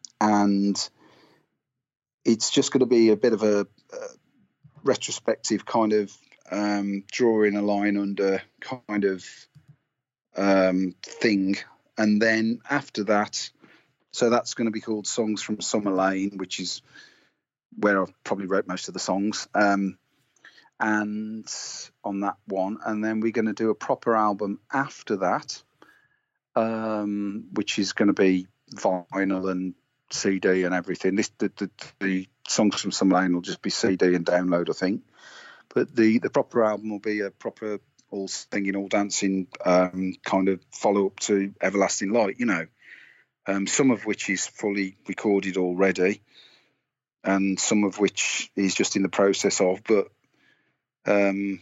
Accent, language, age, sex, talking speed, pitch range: British, English, 30-49, male, 155 wpm, 95-110 Hz